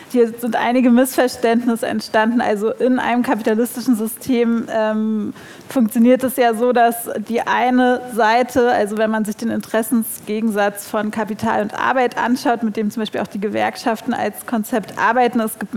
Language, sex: German, female